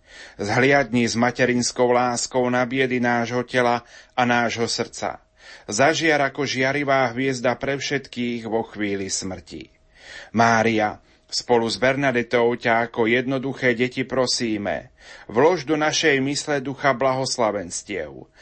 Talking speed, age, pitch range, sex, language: 115 wpm, 30-49, 115-135 Hz, male, Slovak